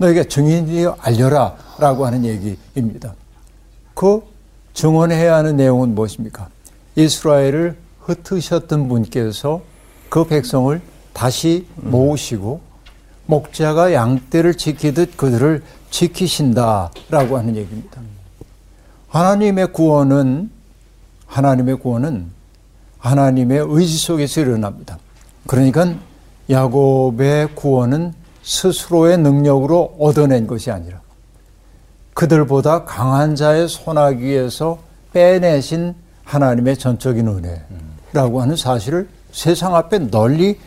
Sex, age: male, 60-79